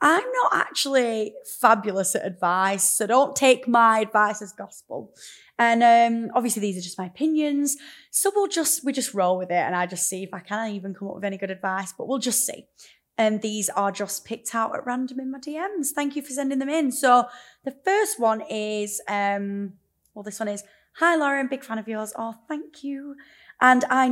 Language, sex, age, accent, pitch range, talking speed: English, female, 20-39, British, 200-260 Hz, 215 wpm